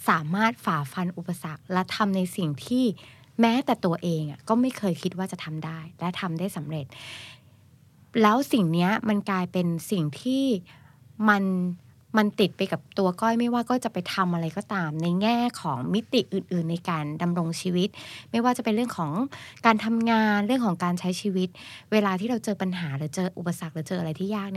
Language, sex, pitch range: Thai, female, 160-215 Hz